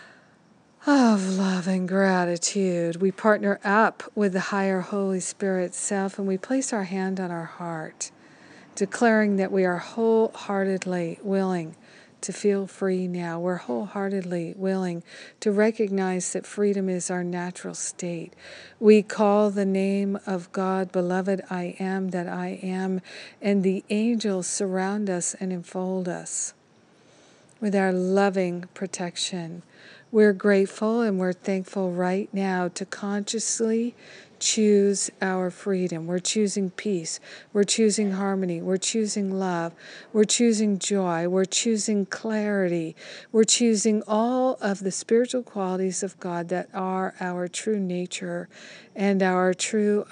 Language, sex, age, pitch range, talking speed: English, female, 50-69, 180-210 Hz, 130 wpm